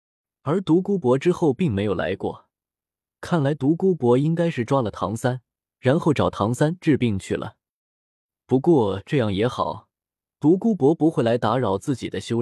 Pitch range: 110-160 Hz